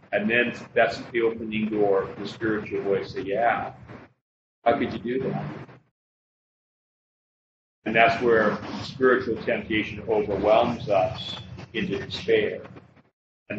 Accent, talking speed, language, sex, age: American, 120 wpm, English, male, 40-59